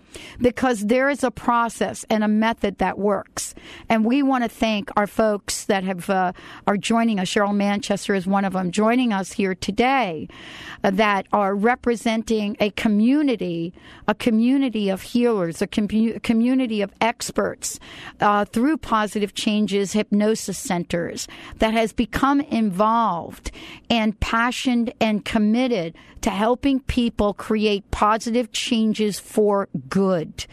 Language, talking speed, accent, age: English, 140 wpm, American, 50-69